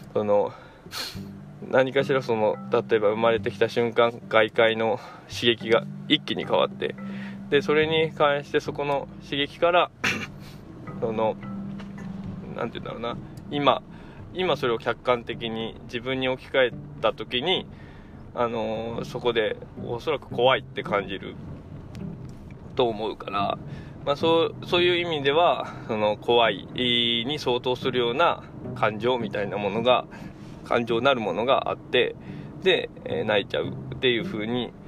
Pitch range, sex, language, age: 115-165 Hz, male, Japanese, 20-39